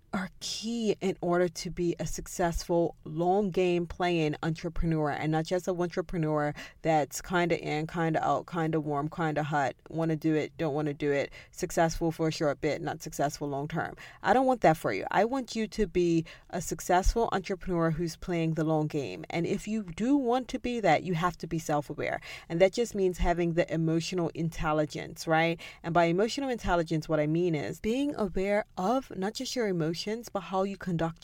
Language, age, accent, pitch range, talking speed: English, 30-49, American, 160-195 Hz, 205 wpm